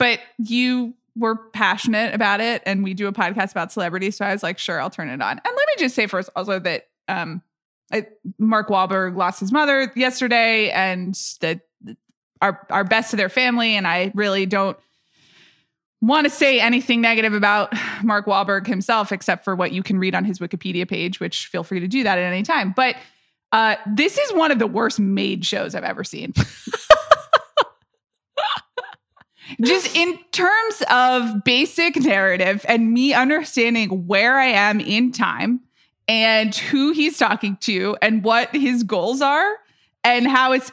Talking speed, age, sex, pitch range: 175 wpm, 20-39, female, 190-250 Hz